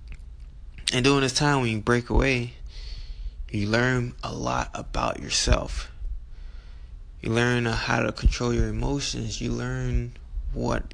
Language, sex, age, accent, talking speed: English, male, 20-39, American, 130 wpm